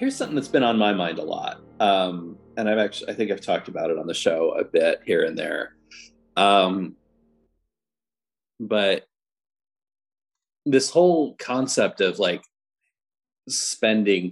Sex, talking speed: male, 145 wpm